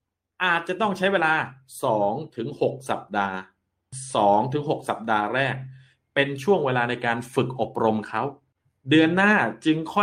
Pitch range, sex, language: 115-155 Hz, male, Thai